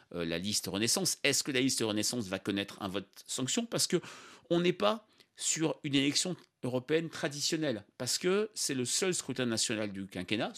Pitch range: 110-150 Hz